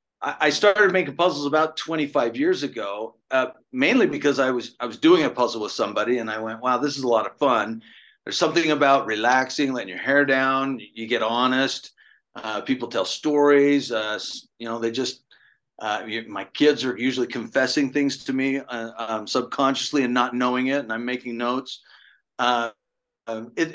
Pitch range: 120-150 Hz